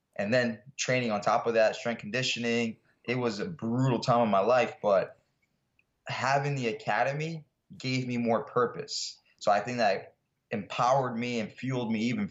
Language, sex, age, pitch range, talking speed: English, male, 20-39, 110-125 Hz, 170 wpm